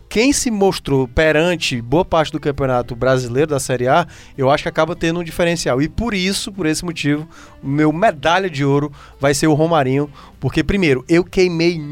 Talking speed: 190 wpm